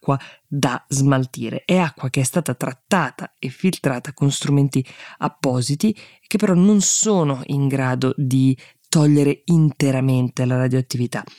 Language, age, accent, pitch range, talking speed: Italian, 20-39, native, 130-155 Hz, 125 wpm